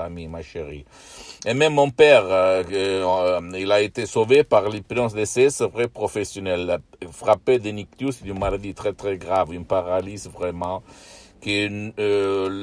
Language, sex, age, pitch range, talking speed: Italian, male, 60-79, 90-120 Hz, 145 wpm